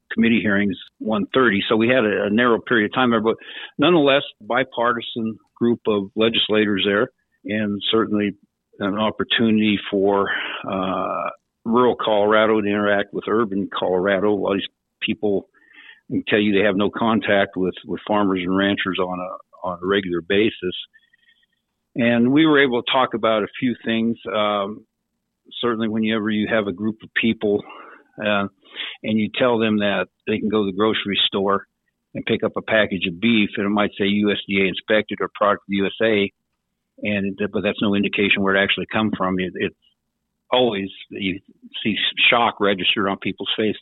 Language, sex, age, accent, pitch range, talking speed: English, male, 50-69, American, 100-115 Hz, 170 wpm